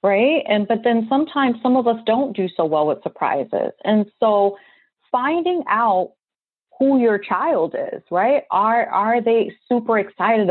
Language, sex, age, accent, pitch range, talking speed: English, female, 30-49, American, 185-245 Hz, 160 wpm